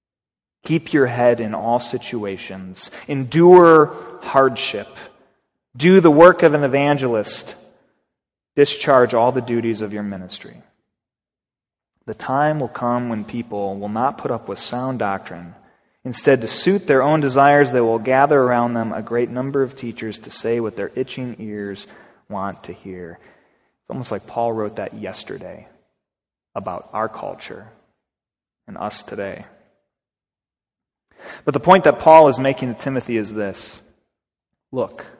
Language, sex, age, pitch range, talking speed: English, male, 30-49, 110-145 Hz, 145 wpm